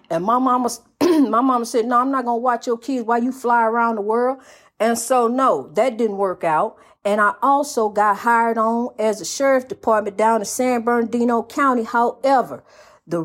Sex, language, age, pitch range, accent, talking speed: female, English, 40-59, 195-245 Hz, American, 190 wpm